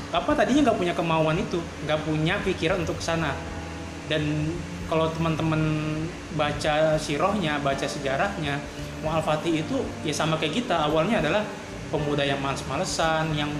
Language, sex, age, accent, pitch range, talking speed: Indonesian, male, 20-39, native, 150-180 Hz, 135 wpm